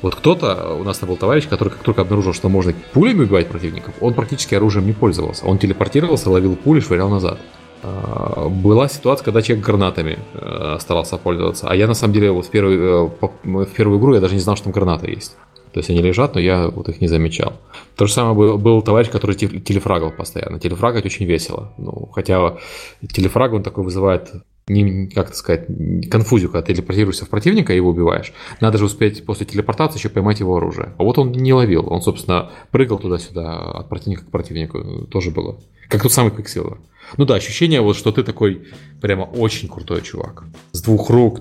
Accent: native